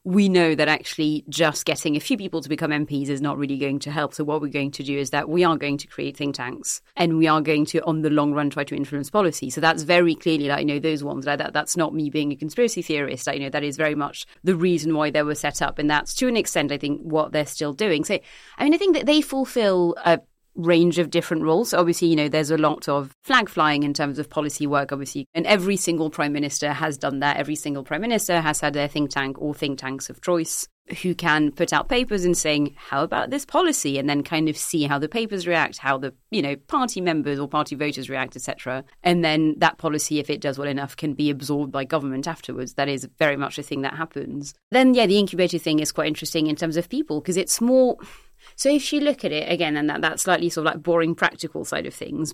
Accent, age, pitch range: British, 30-49, 145-170 Hz